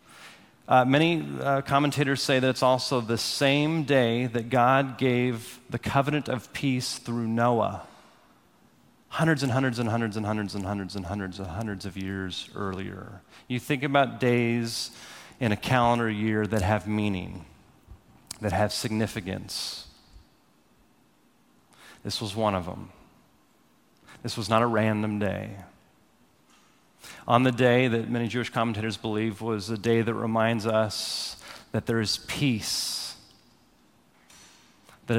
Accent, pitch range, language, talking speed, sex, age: American, 110-130 Hz, English, 135 wpm, male, 30-49